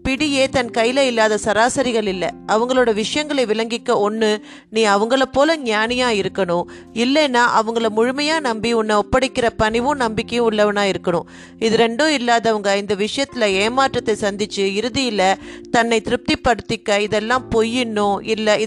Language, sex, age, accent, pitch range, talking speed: Tamil, female, 30-49, native, 210-260 Hz, 120 wpm